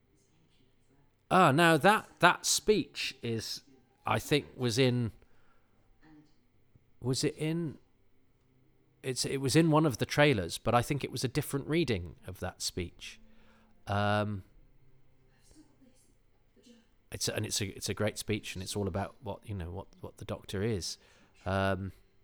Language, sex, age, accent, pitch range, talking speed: English, male, 40-59, British, 100-130 Hz, 150 wpm